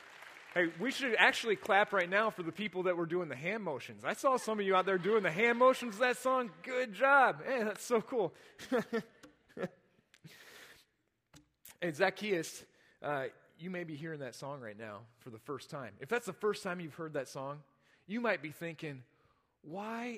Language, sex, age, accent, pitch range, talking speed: English, male, 30-49, American, 170-240 Hz, 195 wpm